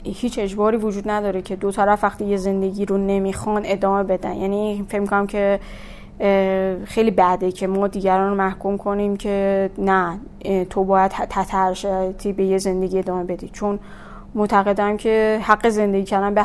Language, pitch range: Persian, 190-210 Hz